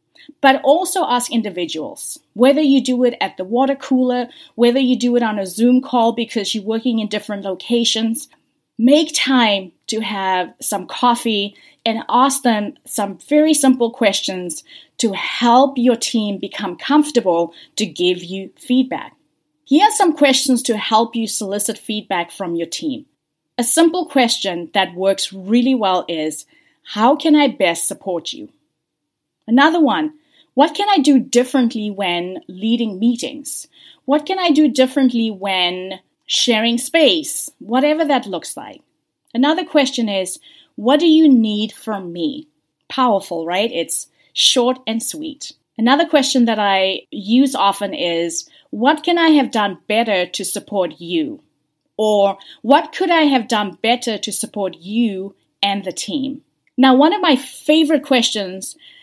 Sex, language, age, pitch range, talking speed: female, English, 30-49, 200-285 Hz, 150 wpm